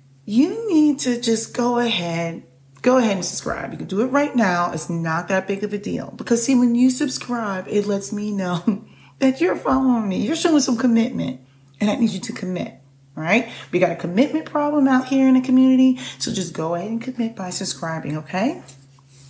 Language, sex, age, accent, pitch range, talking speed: English, female, 30-49, American, 155-240 Hz, 205 wpm